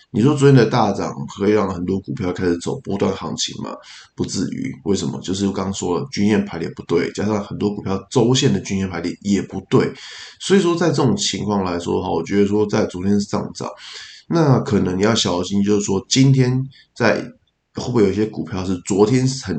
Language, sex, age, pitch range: Chinese, male, 20-39, 95-120 Hz